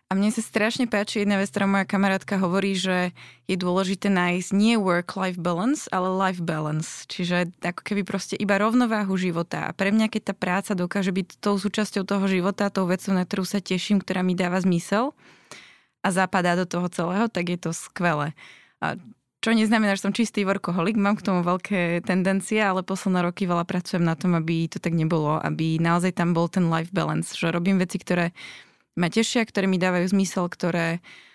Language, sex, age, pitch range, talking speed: Slovak, female, 20-39, 175-200 Hz, 190 wpm